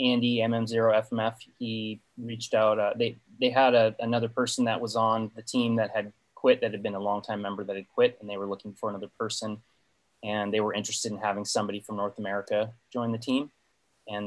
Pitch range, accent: 100-115 Hz, American